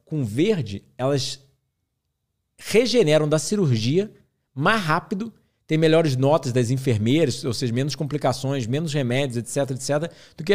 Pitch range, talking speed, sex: 130-170 Hz, 130 wpm, male